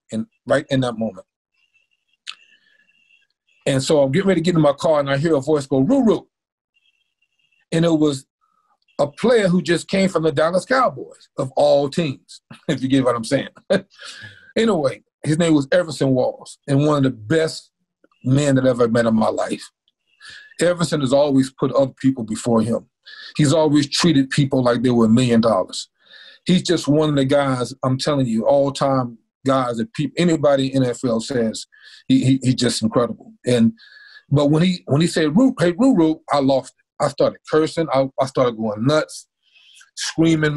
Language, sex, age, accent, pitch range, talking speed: English, male, 40-59, American, 130-180 Hz, 180 wpm